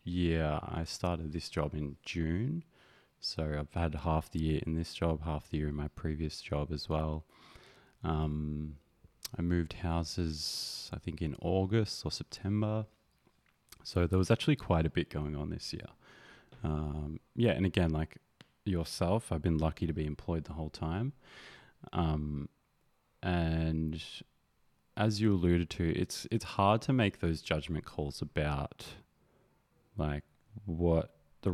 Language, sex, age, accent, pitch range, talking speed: English, male, 20-39, Australian, 75-90 Hz, 150 wpm